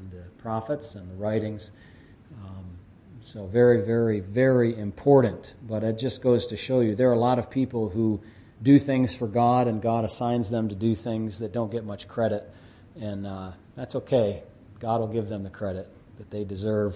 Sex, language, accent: male, English, American